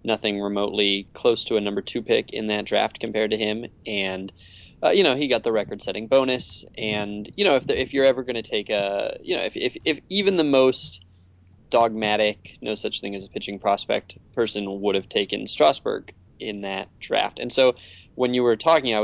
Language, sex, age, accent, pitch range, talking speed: English, male, 20-39, American, 100-130 Hz, 210 wpm